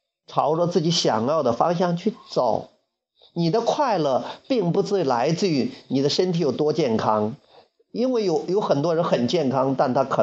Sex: male